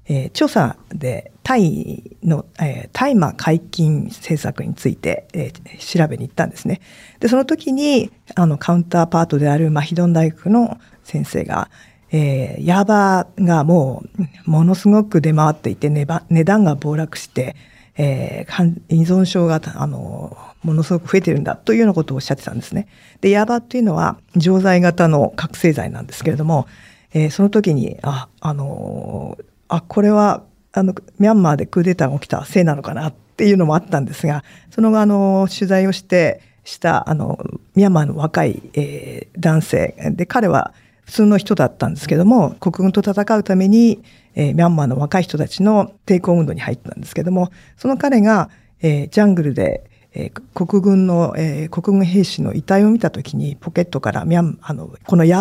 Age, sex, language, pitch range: 50-69, female, Japanese, 155-195 Hz